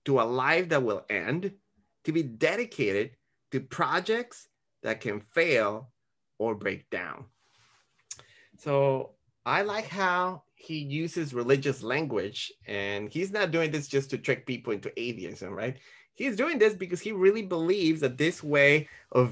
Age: 30-49